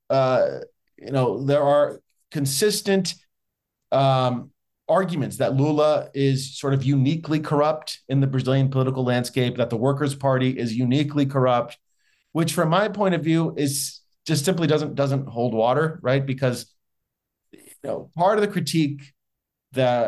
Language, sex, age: English, male, 30-49